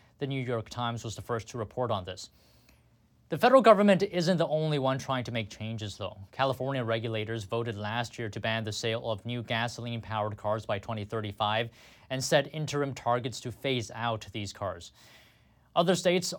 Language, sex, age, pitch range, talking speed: English, male, 20-39, 110-150 Hz, 180 wpm